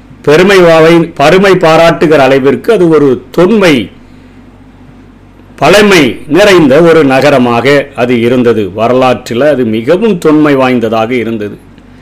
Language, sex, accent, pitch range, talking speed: Tamil, male, native, 125-165 Hz, 95 wpm